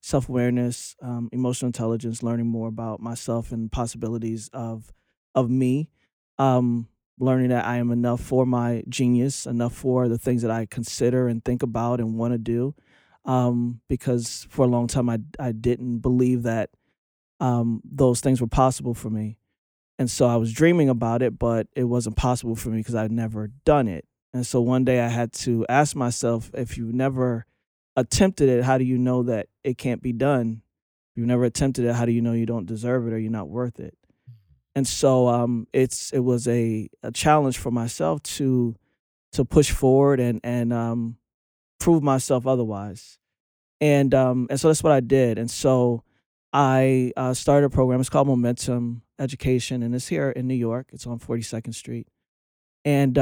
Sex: male